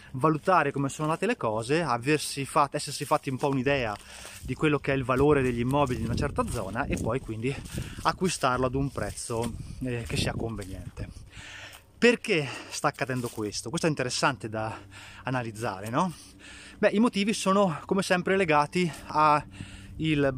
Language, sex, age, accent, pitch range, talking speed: Italian, male, 20-39, native, 115-155 Hz, 155 wpm